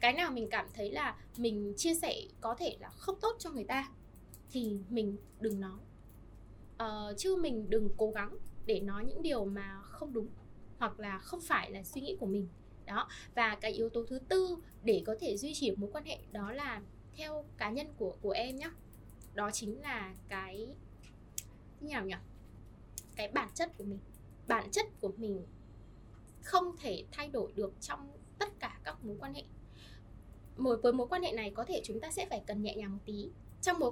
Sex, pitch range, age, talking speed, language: female, 200-315 Hz, 10-29, 200 wpm, Vietnamese